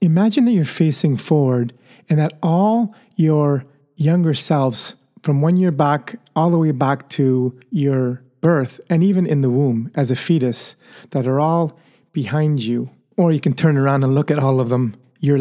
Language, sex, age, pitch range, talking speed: English, male, 40-59, 130-165 Hz, 185 wpm